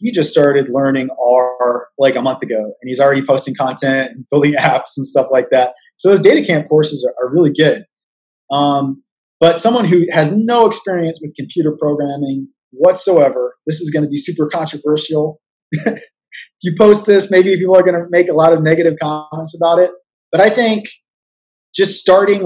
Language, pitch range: English, 135-175 Hz